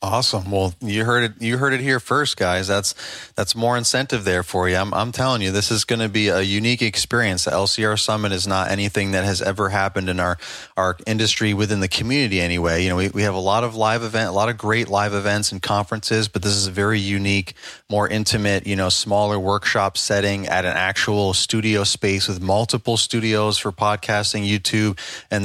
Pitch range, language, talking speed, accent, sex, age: 95-110 Hz, English, 215 wpm, American, male, 30-49